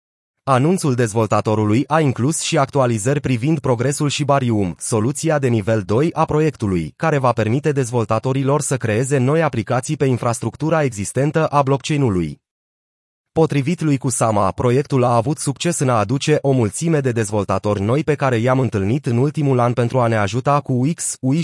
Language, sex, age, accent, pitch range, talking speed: Romanian, male, 30-49, native, 120-150 Hz, 160 wpm